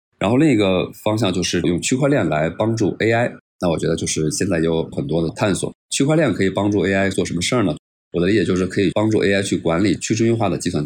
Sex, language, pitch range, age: male, Chinese, 80-100 Hz, 20-39